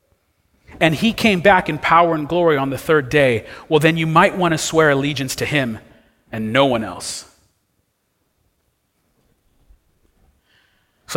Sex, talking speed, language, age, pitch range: male, 140 wpm, English, 40-59, 140-175 Hz